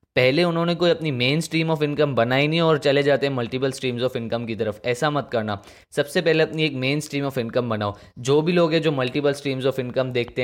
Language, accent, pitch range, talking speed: Hindi, native, 120-140 Hz, 240 wpm